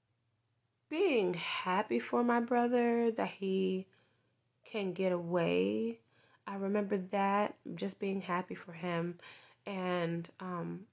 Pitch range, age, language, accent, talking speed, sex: 170-200 Hz, 20-39, English, American, 110 wpm, female